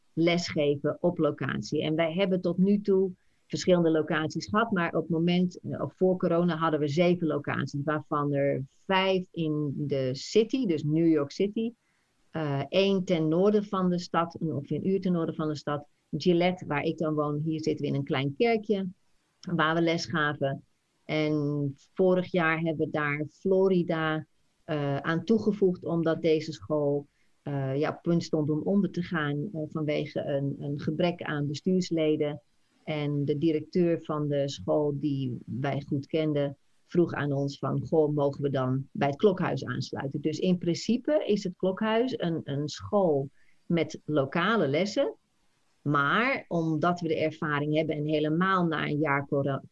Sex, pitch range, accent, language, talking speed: female, 145-180 Hz, Dutch, Dutch, 165 wpm